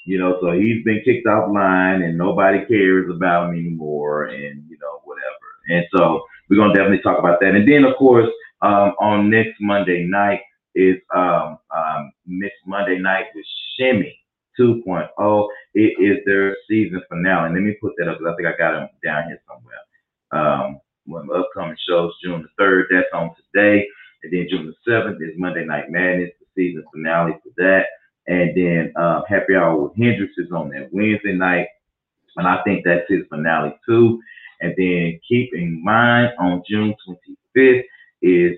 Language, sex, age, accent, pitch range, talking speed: English, male, 30-49, American, 85-105 Hz, 185 wpm